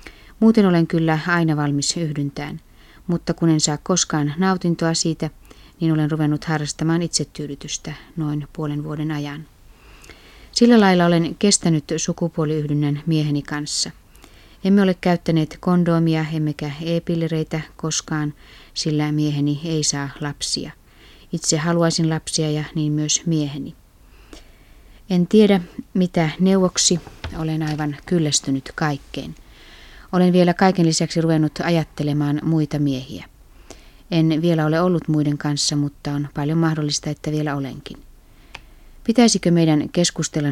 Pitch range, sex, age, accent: 145-170 Hz, female, 30-49, native